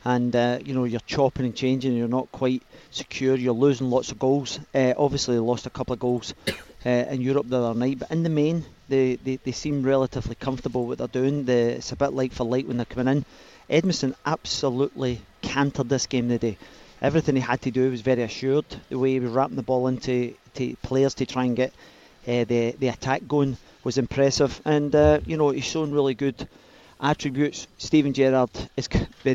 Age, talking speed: 40-59, 215 wpm